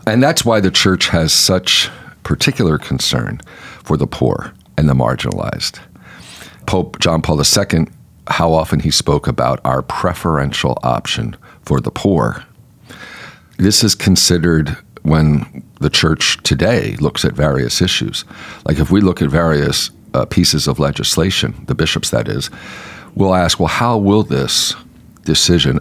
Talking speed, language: 145 wpm, English